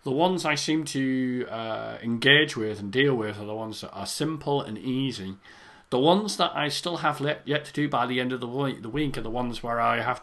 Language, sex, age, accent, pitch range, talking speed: English, male, 40-59, British, 110-140 Hz, 250 wpm